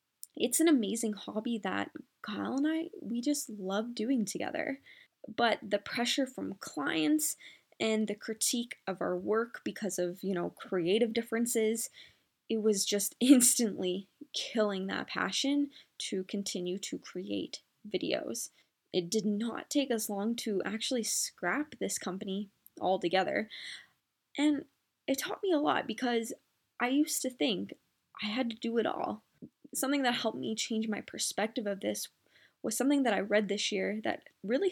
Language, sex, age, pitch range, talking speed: English, female, 10-29, 195-250 Hz, 155 wpm